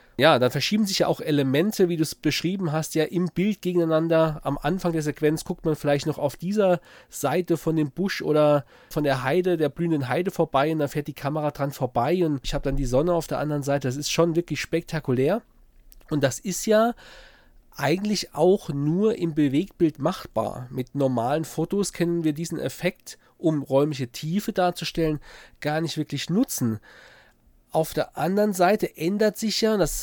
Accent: German